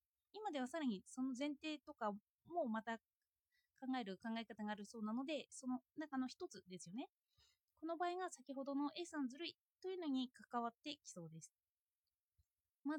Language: Japanese